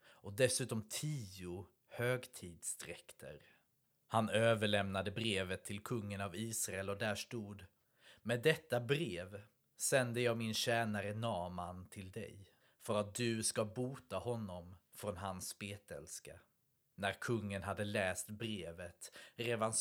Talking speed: 120 wpm